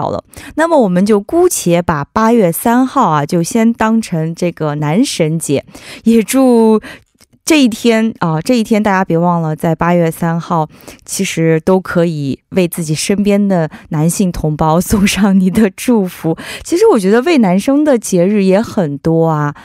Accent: Chinese